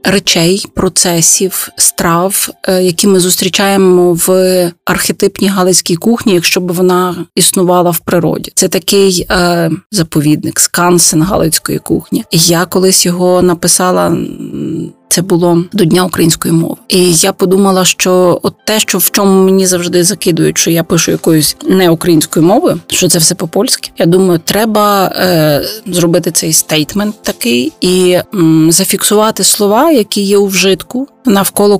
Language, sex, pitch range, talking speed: Ukrainian, female, 175-200 Hz, 140 wpm